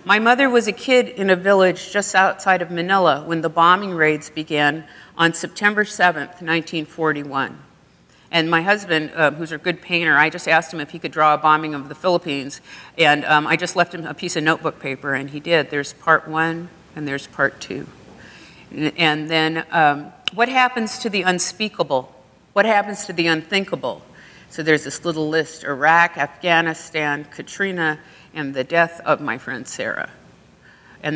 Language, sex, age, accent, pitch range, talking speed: English, female, 50-69, American, 150-180 Hz, 175 wpm